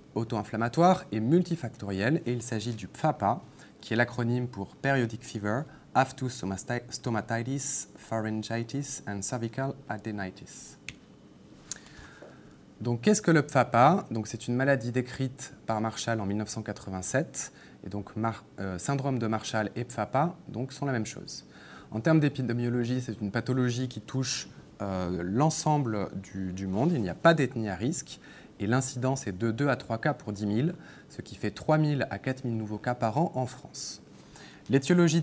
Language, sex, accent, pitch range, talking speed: French, male, French, 110-140 Hz, 160 wpm